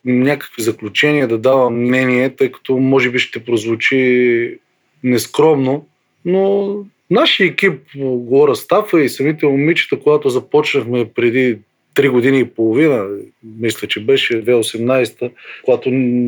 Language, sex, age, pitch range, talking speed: Bulgarian, male, 20-39, 125-155 Hz, 120 wpm